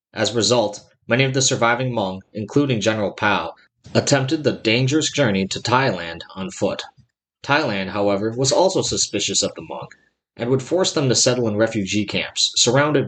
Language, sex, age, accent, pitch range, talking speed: English, male, 30-49, American, 105-135 Hz, 170 wpm